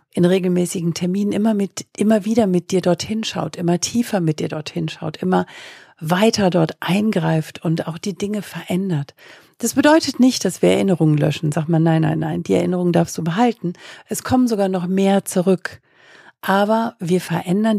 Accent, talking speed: German, 175 wpm